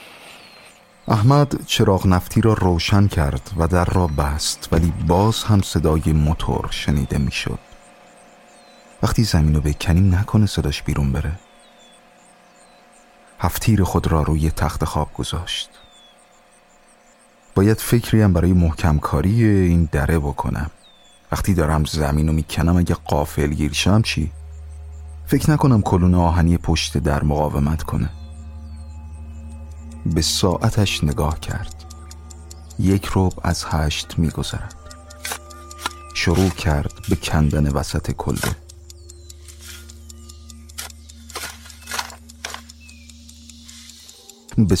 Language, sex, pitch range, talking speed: Persian, male, 75-95 Hz, 95 wpm